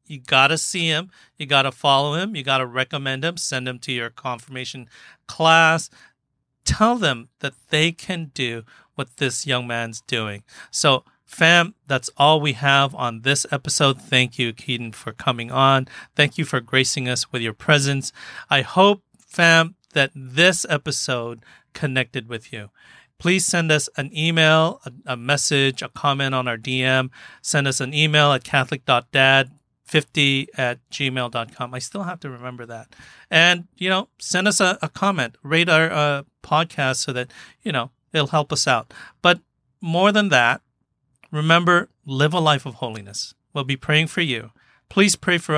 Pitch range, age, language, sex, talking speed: 125-160 Hz, 40-59, English, male, 170 wpm